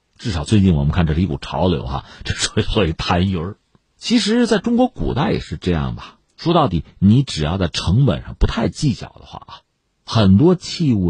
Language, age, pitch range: Chinese, 50-69, 90-150 Hz